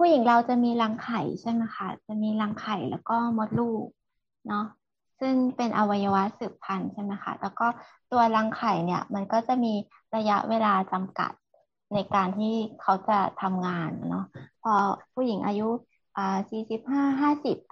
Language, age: Thai, 20-39